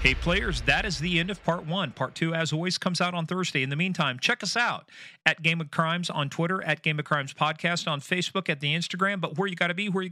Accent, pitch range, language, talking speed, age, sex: American, 145-175 Hz, English, 280 wpm, 40-59, male